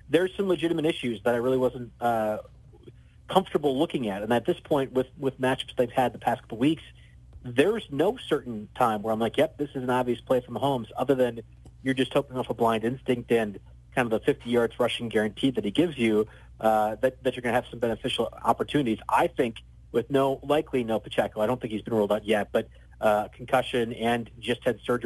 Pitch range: 110-130 Hz